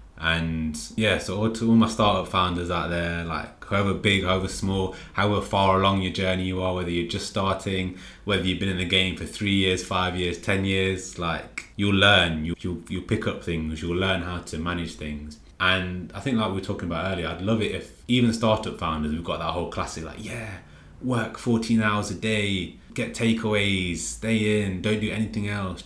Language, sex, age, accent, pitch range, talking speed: English, male, 20-39, British, 80-105 Hz, 210 wpm